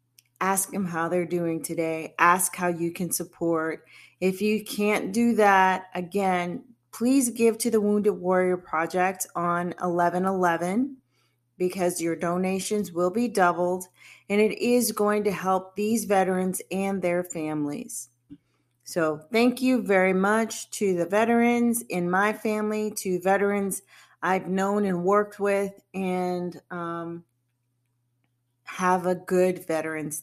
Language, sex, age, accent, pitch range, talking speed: English, female, 40-59, American, 170-215 Hz, 135 wpm